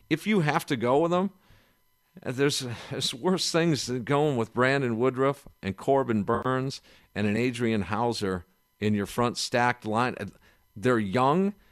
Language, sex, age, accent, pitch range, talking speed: English, male, 50-69, American, 110-155 Hz, 155 wpm